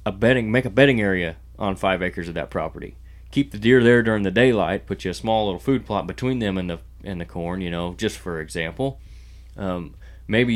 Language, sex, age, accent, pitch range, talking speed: English, male, 30-49, American, 85-110 Hz, 225 wpm